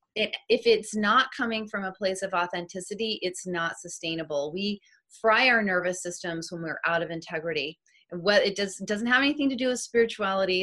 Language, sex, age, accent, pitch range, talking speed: English, female, 30-49, American, 175-220 Hz, 185 wpm